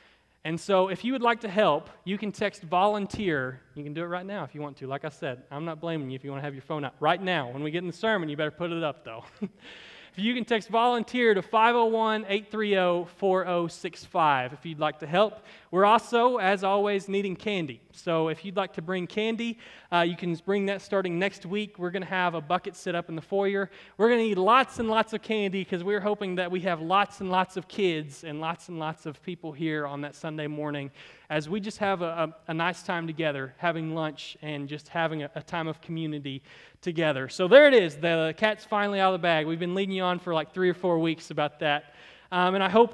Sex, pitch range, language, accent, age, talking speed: male, 160-205 Hz, English, American, 30-49, 245 wpm